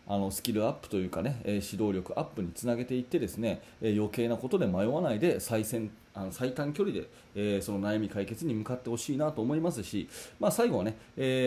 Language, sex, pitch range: Japanese, male, 105-140 Hz